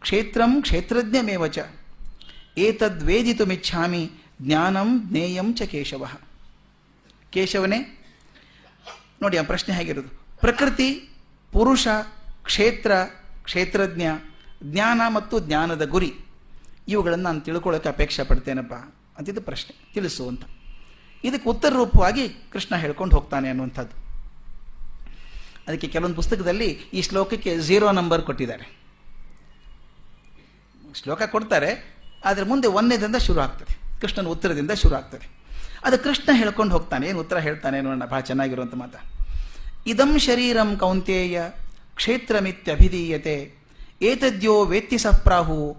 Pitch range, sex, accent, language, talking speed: 150-215 Hz, male, native, Kannada, 95 wpm